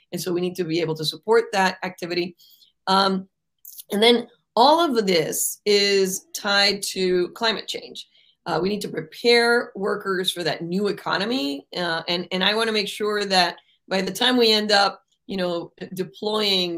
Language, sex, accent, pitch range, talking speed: English, female, American, 170-215 Hz, 180 wpm